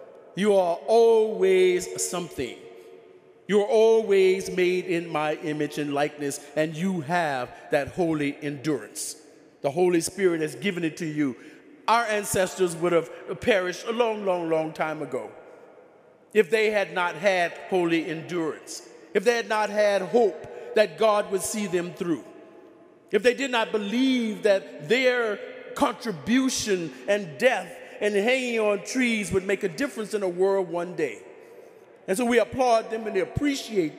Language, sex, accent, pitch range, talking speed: English, male, American, 170-225 Hz, 155 wpm